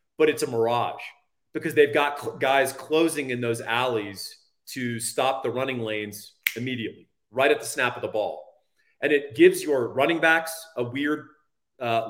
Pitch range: 115-150 Hz